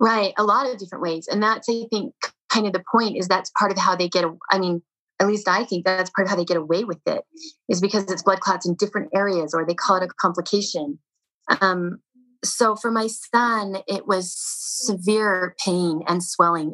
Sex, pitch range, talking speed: female, 170-210 Hz, 220 wpm